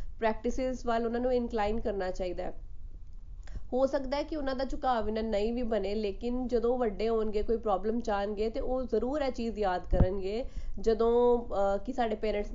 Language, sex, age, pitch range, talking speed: Punjabi, female, 20-39, 205-240 Hz, 175 wpm